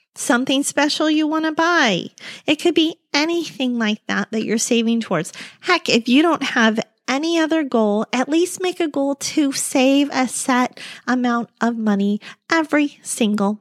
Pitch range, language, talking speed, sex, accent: 220-295 Hz, English, 170 wpm, female, American